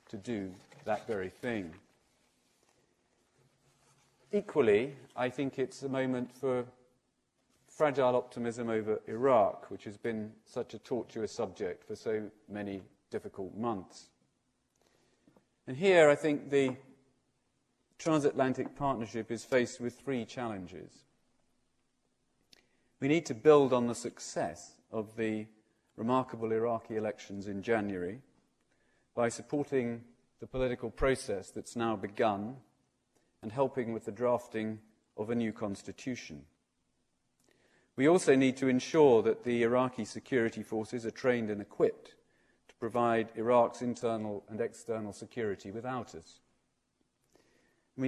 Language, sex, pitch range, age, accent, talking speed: English, male, 110-130 Hz, 40-59, British, 120 wpm